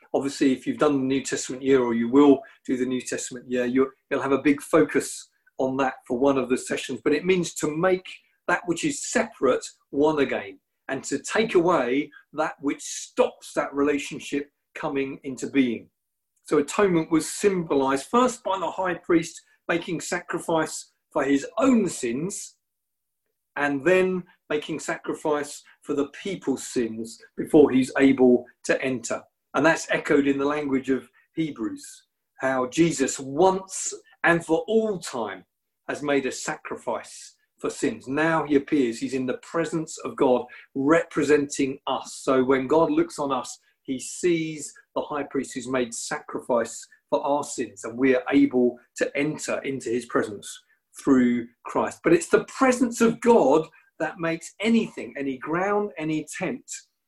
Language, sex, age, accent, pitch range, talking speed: English, male, 40-59, British, 135-180 Hz, 160 wpm